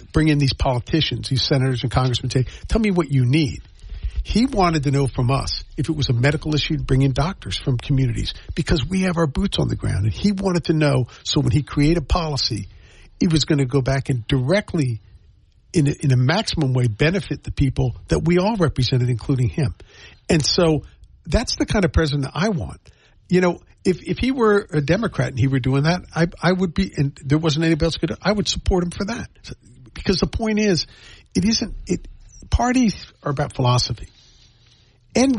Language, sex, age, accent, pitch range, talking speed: English, male, 50-69, American, 125-170 Hz, 210 wpm